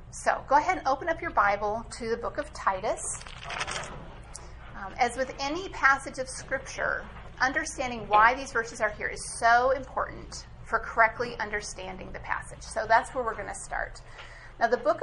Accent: American